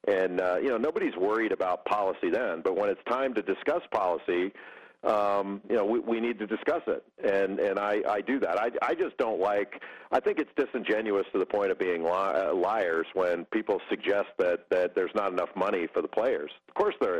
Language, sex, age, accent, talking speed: English, male, 50-69, American, 220 wpm